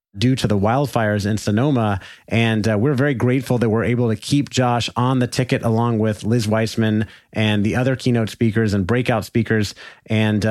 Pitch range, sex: 105-120 Hz, male